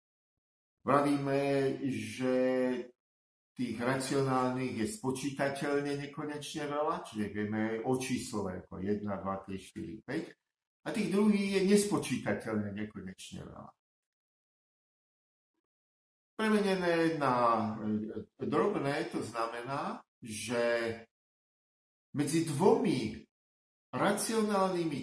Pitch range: 110-170 Hz